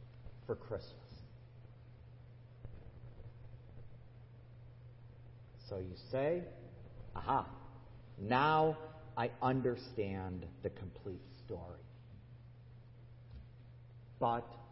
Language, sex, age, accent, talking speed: English, male, 50-69, American, 55 wpm